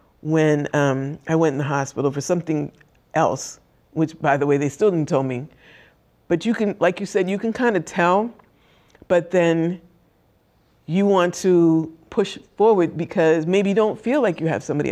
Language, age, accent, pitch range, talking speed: English, 50-69, American, 150-190 Hz, 185 wpm